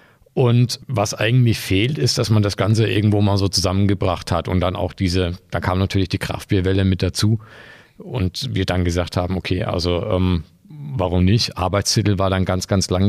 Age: 50-69